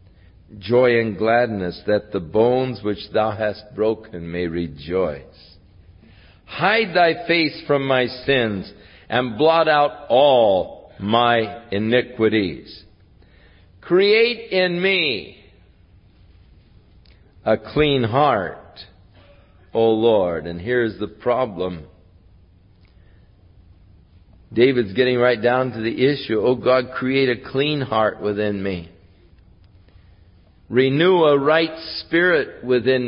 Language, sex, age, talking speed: English, male, 50-69, 100 wpm